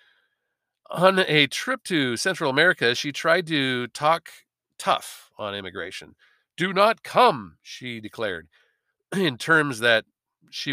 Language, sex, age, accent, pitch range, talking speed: English, male, 40-59, American, 125-165 Hz, 125 wpm